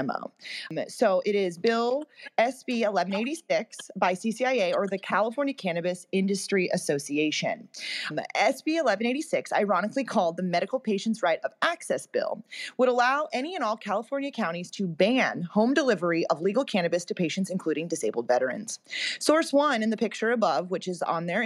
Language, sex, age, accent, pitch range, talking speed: English, female, 30-49, American, 195-260 Hz, 150 wpm